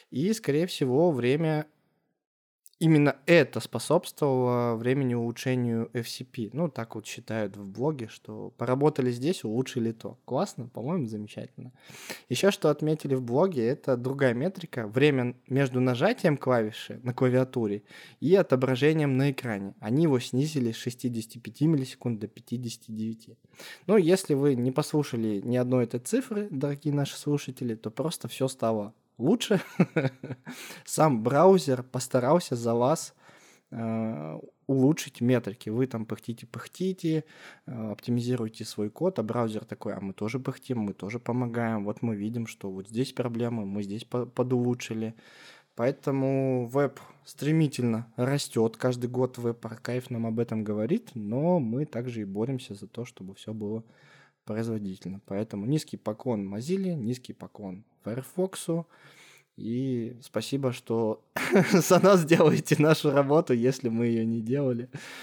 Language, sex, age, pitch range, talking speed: Russian, male, 20-39, 115-145 Hz, 130 wpm